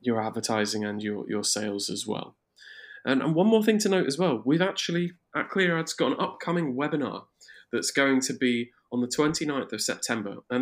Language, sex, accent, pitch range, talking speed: English, male, British, 115-145 Hz, 200 wpm